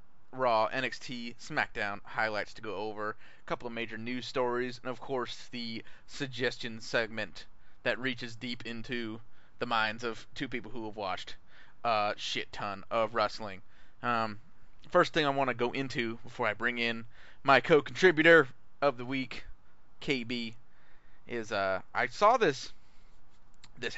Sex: male